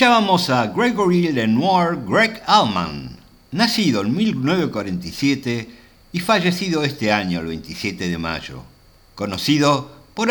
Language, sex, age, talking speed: Spanish, male, 60-79, 110 wpm